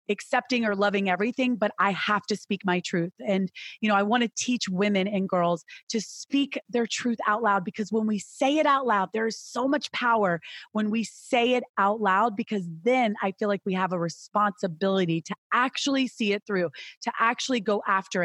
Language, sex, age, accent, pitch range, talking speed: English, female, 30-49, American, 190-240 Hz, 205 wpm